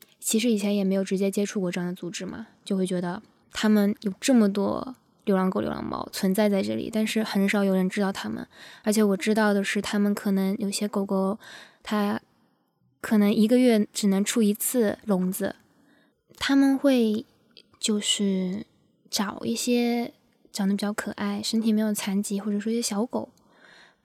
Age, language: 20-39, Chinese